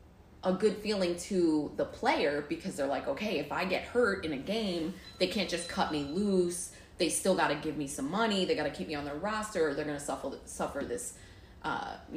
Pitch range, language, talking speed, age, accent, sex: 150-190 Hz, English, 230 wpm, 20-39, American, female